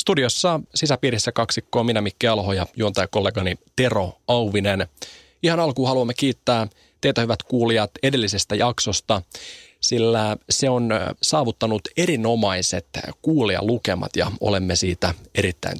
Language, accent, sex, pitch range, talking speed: Finnish, native, male, 100-130 Hz, 120 wpm